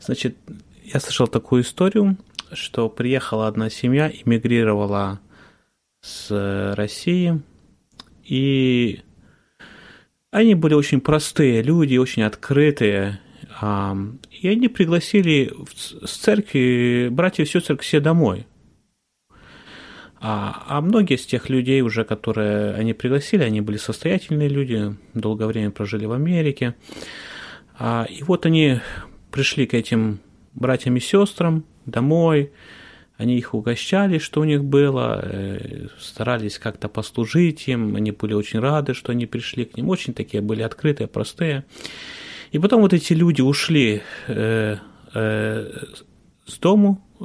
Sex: male